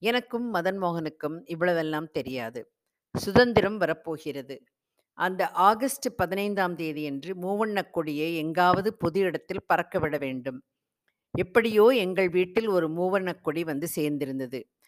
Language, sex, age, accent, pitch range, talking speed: Tamil, female, 50-69, native, 150-195 Hz, 110 wpm